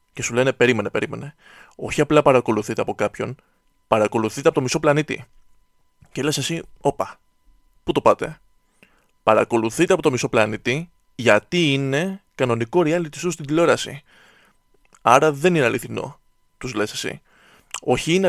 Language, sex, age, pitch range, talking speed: Greek, male, 20-39, 125-185 Hz, 140 wpm